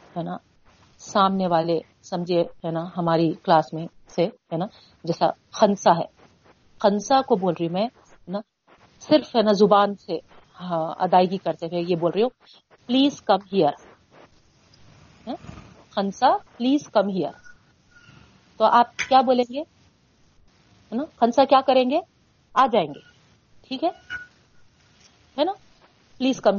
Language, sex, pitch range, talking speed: Urdu, female, 185-270 Hz, 110 wpm